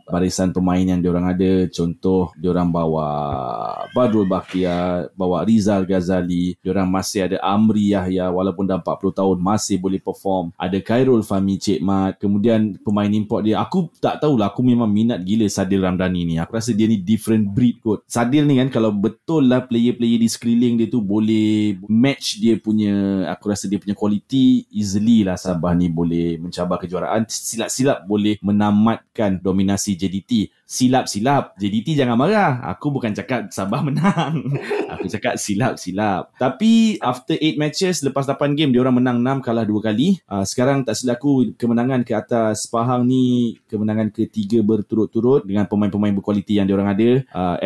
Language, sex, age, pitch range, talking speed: Malay, male, 20-39, 95-120 Hz, 165 wpm